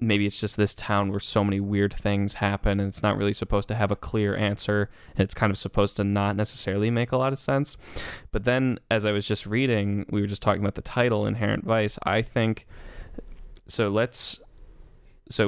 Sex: male